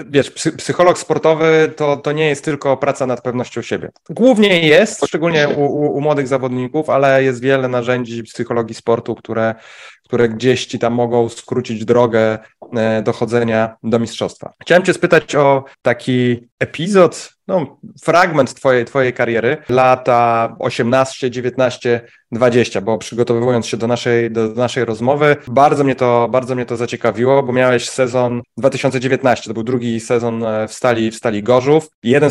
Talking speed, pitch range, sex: 145 wpm, 120-140 Hz, male